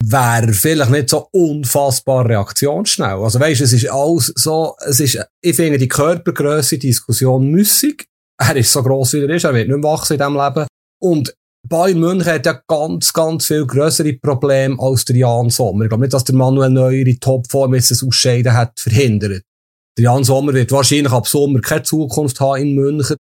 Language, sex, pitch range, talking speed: German, male, 125-160 Hz, 190 wpm